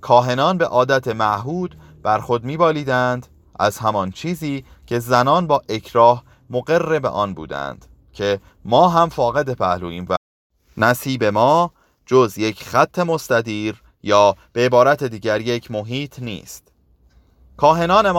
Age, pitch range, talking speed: 30-49, 100-135 Hz, 125 wpm